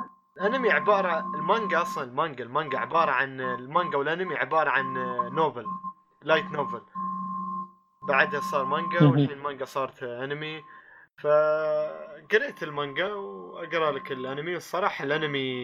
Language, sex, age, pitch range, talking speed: Arabic, male, 20-39, 140-210 Hz, 110 wpm